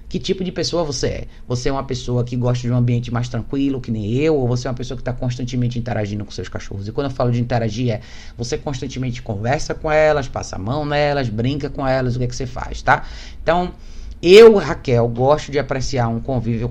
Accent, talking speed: Brazilian, 235 wpm